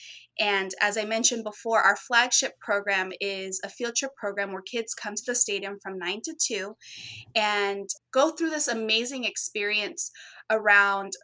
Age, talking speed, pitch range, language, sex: 20-39, 160 wpm, 195-235 Hz, English, female